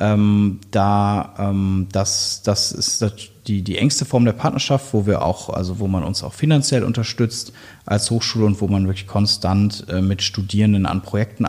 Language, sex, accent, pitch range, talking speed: German, male, German, 95-115 Hz, 180 wpm